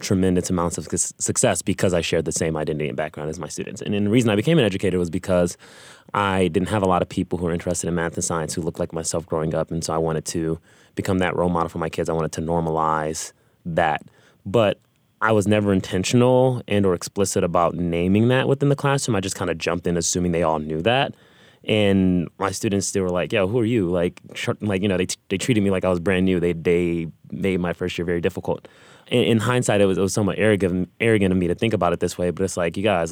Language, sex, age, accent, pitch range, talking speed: English, male, 20-39, American, 85-100 Hz, 260 wpm